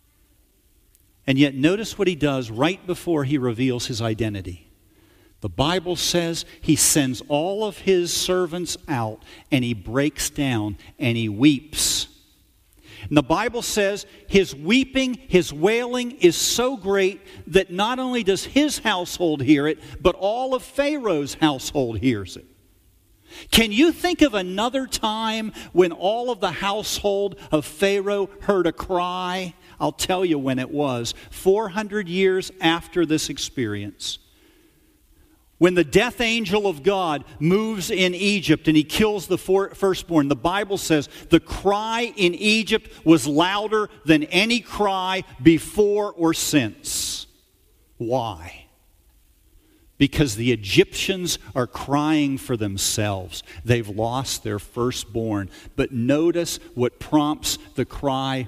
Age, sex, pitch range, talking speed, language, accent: 50-69, male, 120-195 Hz, 130 wpm, English, American